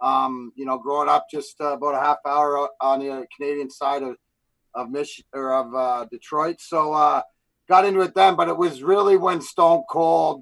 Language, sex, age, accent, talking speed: English, male, 30-49, American, 205 wpm